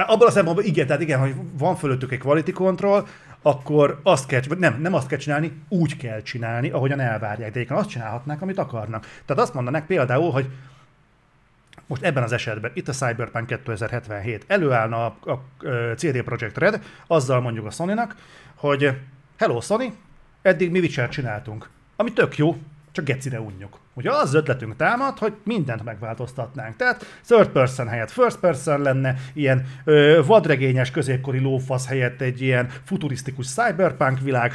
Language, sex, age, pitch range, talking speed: Hungarian, male, 40-59, 125-170 Hz, 160 wpm